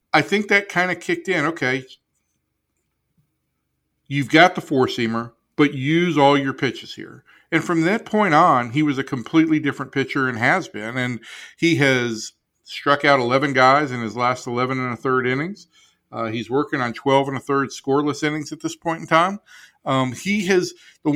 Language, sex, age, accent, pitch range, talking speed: English, male, 50-69, American, 120-150 Hz, 185 wpm